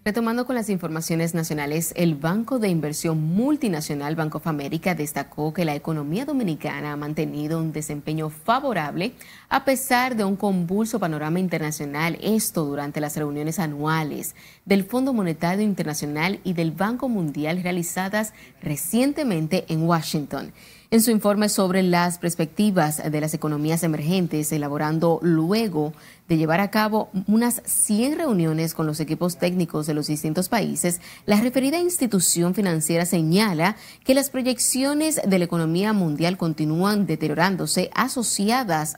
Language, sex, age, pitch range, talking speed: Spanish, female, 30-49, 160-210 Hz, 135 wpm